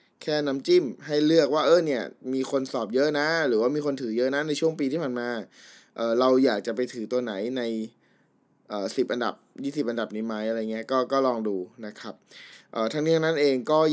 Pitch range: 115-140 Hz